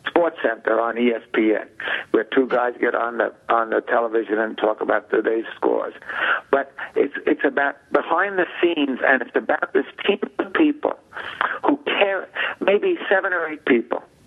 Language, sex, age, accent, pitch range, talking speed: English, male, 60-79, American, 120-170 Hz, 165 wpm